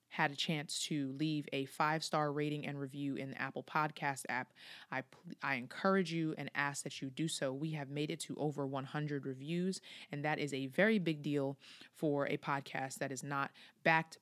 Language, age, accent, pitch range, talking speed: English, 20-39, American, 145-170 Hz, 205 wpm